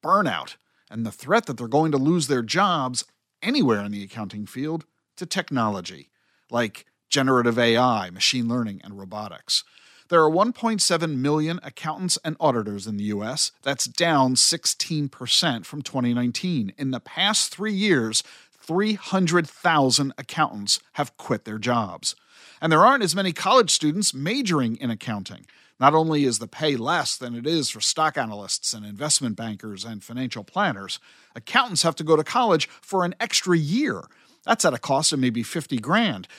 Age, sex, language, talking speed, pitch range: 50-69, male, English, 160 wpm, 120-180 Hz